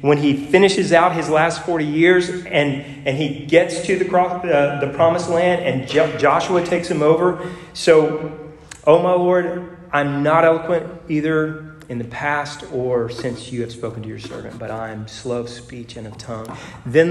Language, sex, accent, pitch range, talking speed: English, male, American, 150-200 Hz, 185 wpm